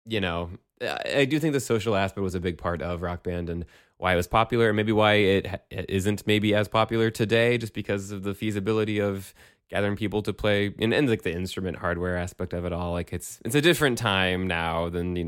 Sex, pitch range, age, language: male, 90-115 Hz, 20-39, English